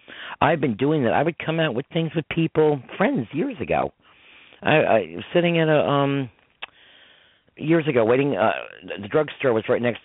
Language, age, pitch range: English, 50-69, 95-135 Hz